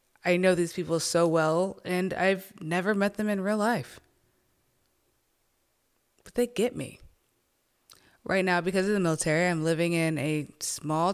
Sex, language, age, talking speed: female, English, 20-39, 155 wpm